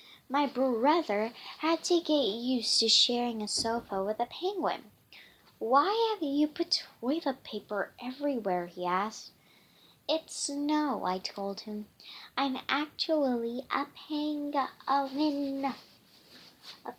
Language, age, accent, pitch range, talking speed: English, 10-29, American, 210-280 Hz, 110 wpm